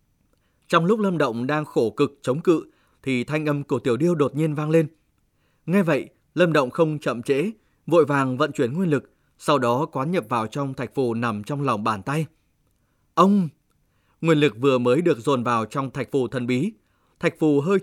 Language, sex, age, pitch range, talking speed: Vietnamese, male, 20-39, 125-160 Hz, 205 wpm